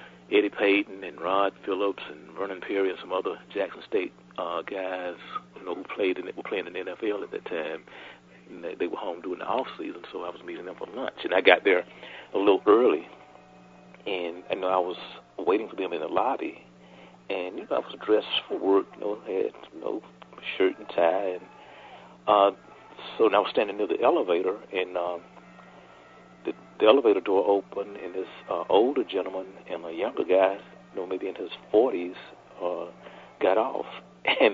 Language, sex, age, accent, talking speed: English, male, 50-69, American, 195 wpm